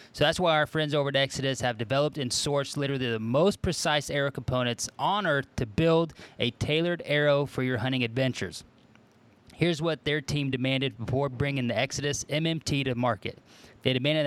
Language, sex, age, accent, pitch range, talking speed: English, male, 20-39, American, 120-150 Hz, 180 wpm